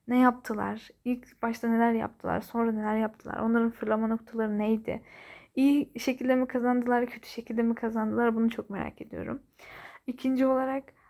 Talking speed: 145 wpm